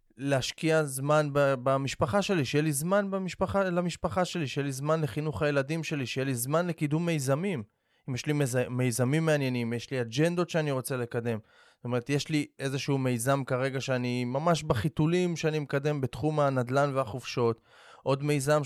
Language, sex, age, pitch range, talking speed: Hebrew, male, 20-39, 125-155 Hz, 165 wpm